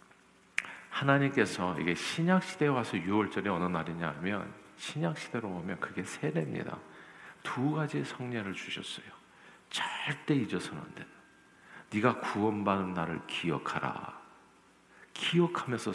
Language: Korean